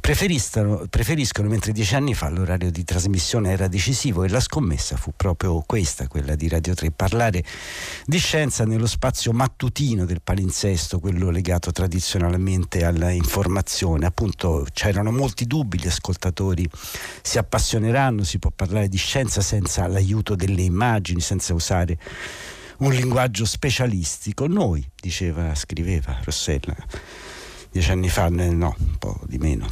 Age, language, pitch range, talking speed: 60-79, Italian, 85-110 Hz, 135 wpm